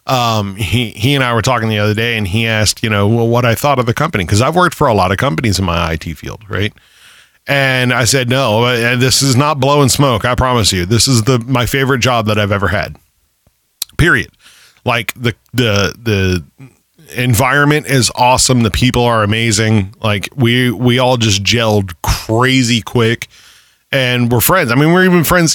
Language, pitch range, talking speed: English, 110-140 Hz, 200 wpm